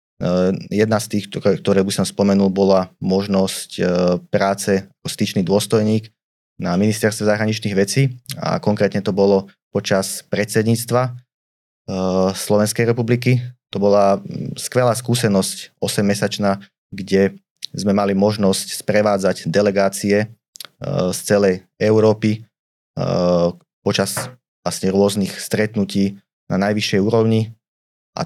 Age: 20-39